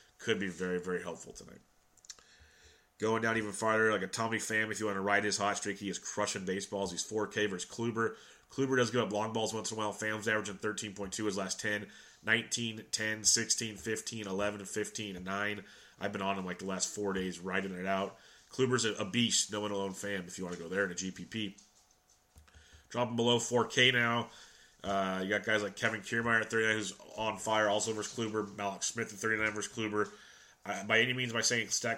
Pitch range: 100-115 Hz